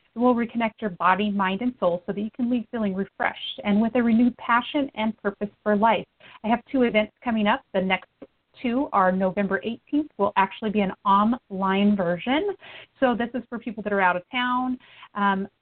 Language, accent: English, American